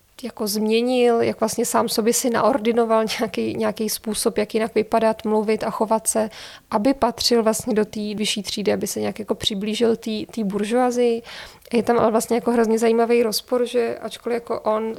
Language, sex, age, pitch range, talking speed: Czech, female, 20-39, 210-230 Hz, 170 wpm